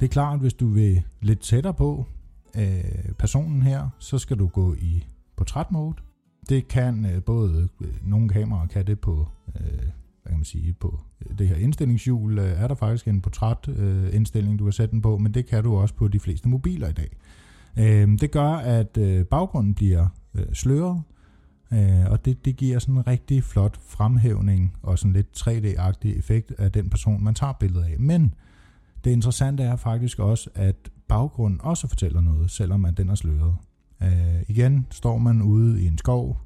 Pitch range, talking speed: 95-125 Hz, 190 wpm